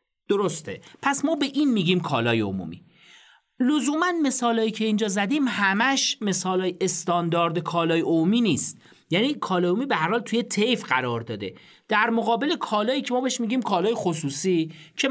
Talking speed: 155 wpm